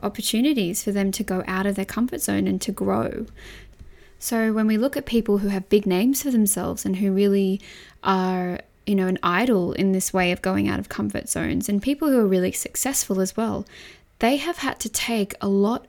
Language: English